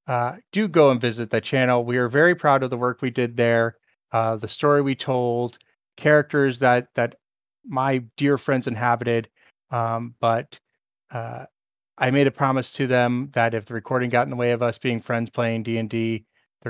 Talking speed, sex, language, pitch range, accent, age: 190 wpm, male, English, 115-145 Hz, American, 30-49